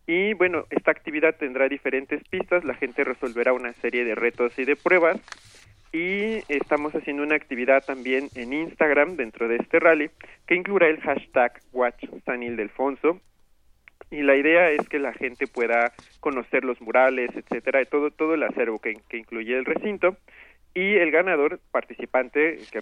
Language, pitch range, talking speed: Spanish, 120-160 Hz, 165 wpm